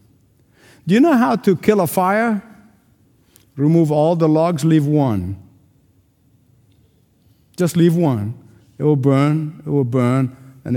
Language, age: English, 50-69